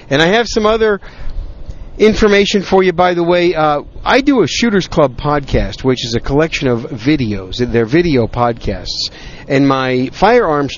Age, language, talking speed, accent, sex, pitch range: 50-69, English, 175 wpm, American, male, 125-165 Hz